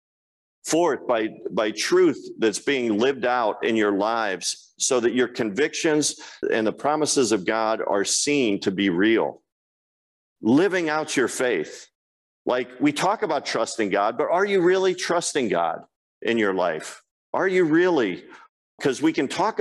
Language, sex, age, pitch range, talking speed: English, male, 50-69, 115-180 Hz, 155 wpm